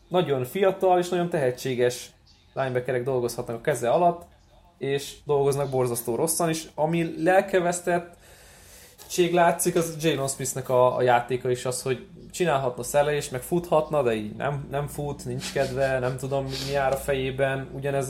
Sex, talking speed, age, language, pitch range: male, 155 wpm, 20-39, Hungarian, 125-145 Hz